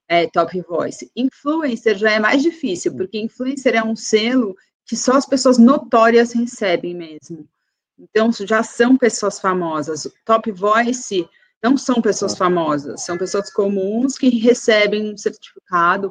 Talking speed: 140 wpm